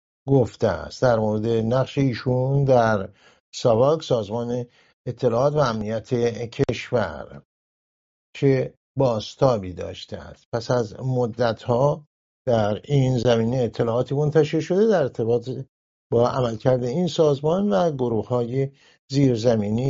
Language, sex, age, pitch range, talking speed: English, male, 50-69, 115-140 Hz, 110 wpm